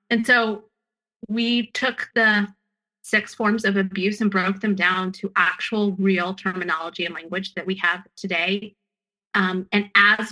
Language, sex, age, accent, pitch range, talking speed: English, female, 30-49, American, 190-220 Hz, 150 wpm